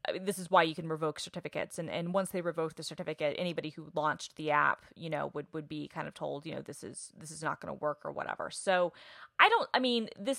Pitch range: 155-180 Hz